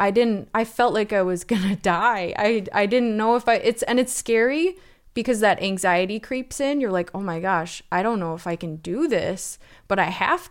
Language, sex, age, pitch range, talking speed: English, female, 20-39, 175-210 Hz, 235 wpm